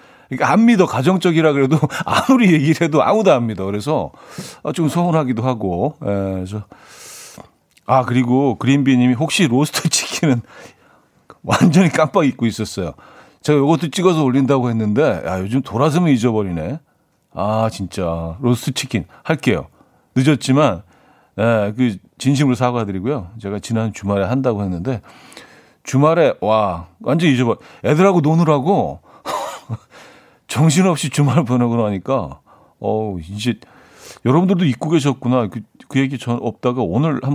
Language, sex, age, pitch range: Korean, male, 40-59, 100-145 Hz